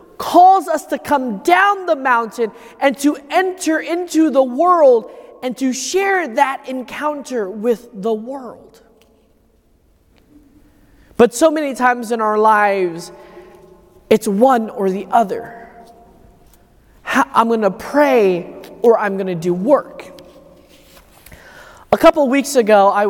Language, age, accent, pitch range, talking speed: English, 20-39, American, 205-285 Hz, 125 wpm